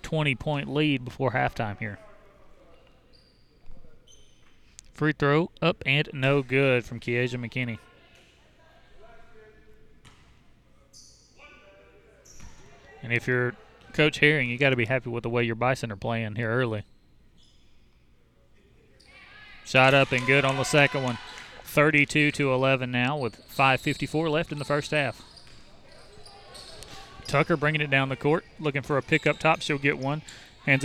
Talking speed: 130 wpm